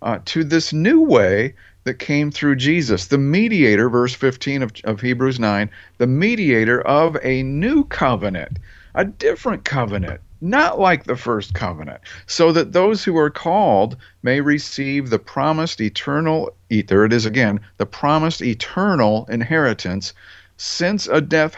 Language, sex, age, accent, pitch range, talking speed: English, male, 50-69, American, 110-145 Hz, 145 wpm